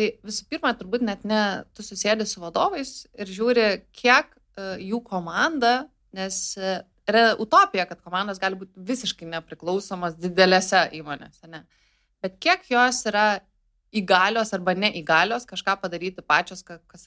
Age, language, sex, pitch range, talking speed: 20-39, English, female, 180-215 Hz, 135 wpm